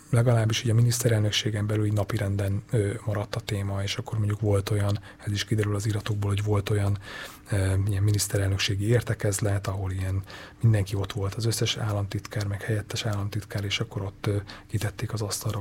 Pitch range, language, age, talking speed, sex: 100-115 Hz, Hungarian, 30-49, 160 wpm, male